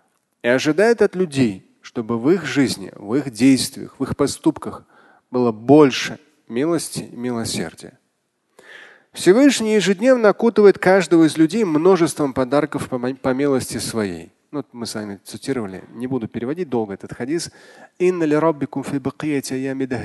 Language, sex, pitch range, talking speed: Russian, male, 135-200 Hz, 125 wpm